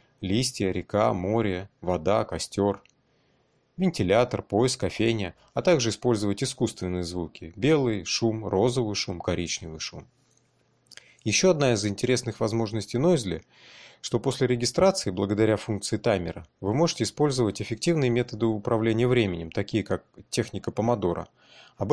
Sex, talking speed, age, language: male, 120 wpm, 30-49, Russian